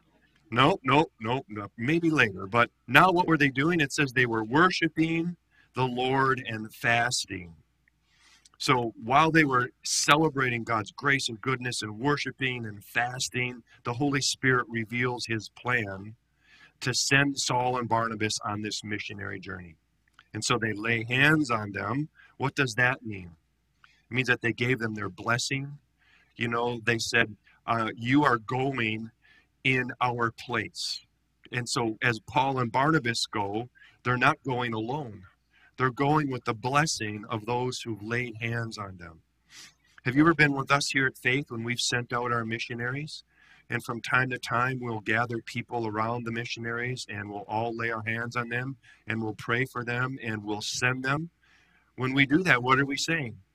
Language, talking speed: English, 175 wpm